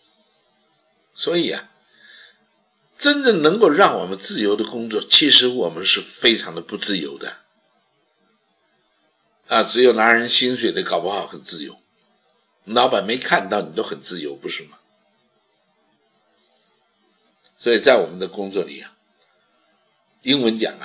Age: 60-79